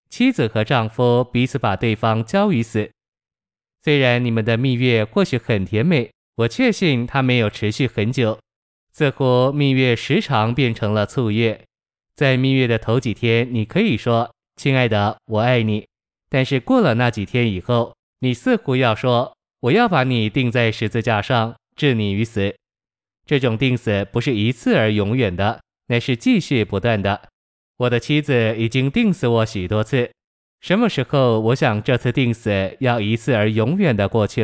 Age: 20-39